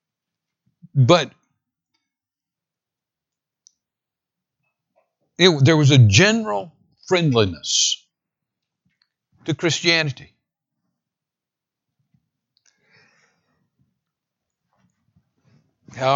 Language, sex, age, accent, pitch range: English, male, 60-79, American, 130-170 Hz